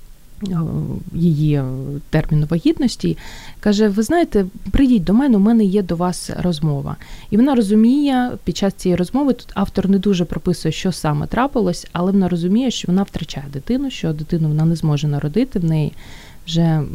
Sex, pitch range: female, 160-210 Hz